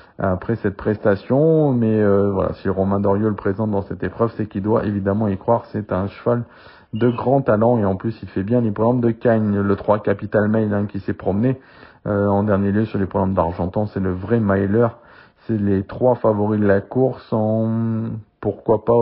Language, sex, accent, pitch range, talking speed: French, male, French, 100-120 Hz, 210 wpm